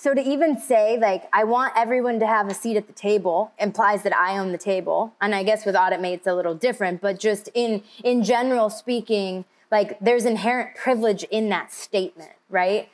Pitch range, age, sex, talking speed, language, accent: 200-250 Hz, 20-39, female, 205 wpm, English, American